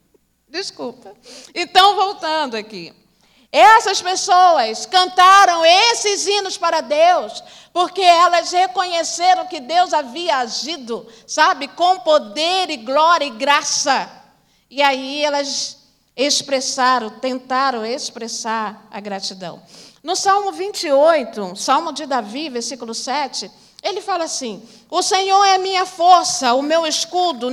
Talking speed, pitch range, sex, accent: 115 wpm, 250-350 Hz, female, Brazilian